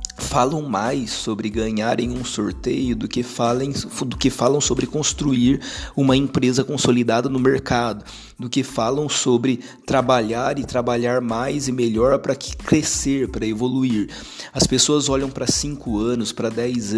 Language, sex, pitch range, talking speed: Portuguese, male, 115-140 Hz, 140 wpm